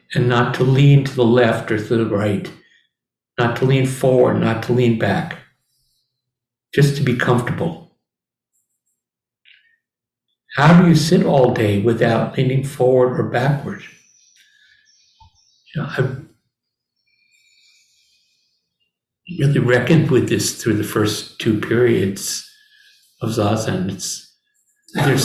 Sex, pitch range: male, 115-155 Hz